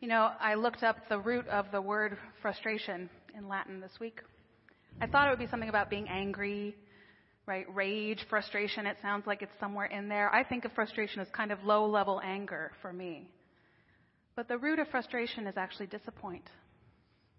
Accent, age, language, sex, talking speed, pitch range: American, 30-49, English, female, 185 wpm, 195-235 Hz